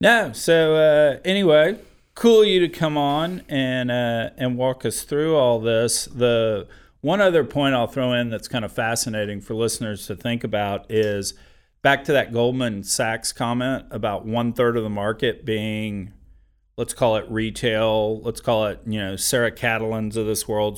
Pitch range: 105-125 Hz